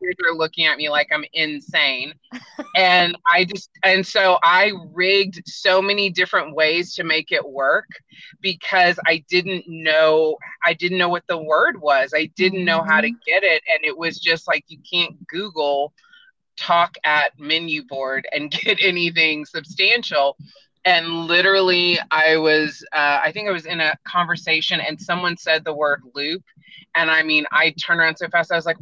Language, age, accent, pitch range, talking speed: English, 30-49, American, 155-185 Hz, 180 wpm